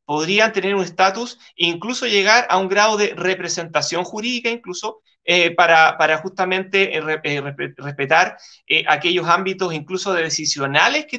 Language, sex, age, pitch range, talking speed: Spanish, male, 30-49, 170-205 Hz, 140 wpm